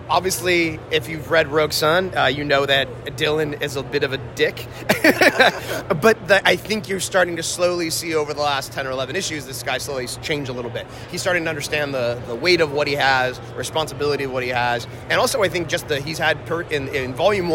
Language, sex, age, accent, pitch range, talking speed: English, male, 30-49, American, 130-160 Hz, 225 wpm